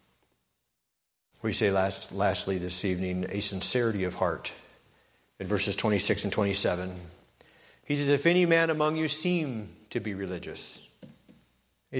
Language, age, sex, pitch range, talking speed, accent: English, 50-69, male, 95-130 Hz, 145 wpm, American